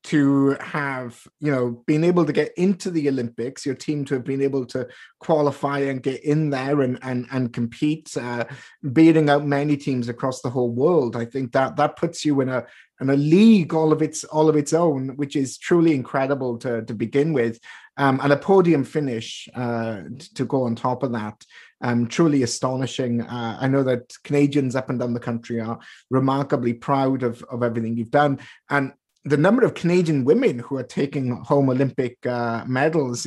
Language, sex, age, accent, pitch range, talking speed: English, male, 30-49, British, 125-155 Hz, 195 wpm